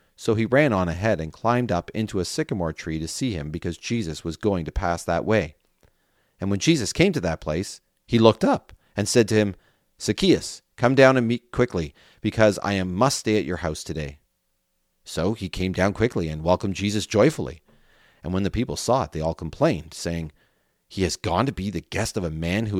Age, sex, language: 30-49, male, English